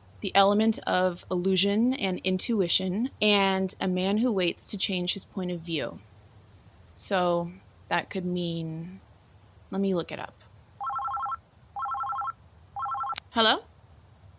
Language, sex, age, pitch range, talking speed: English, female, 20-39, 175-265 Hz, 115 wpm